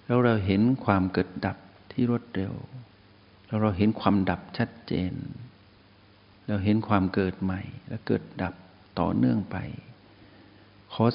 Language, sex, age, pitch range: Thai, male, 60-79, 100-120 Hz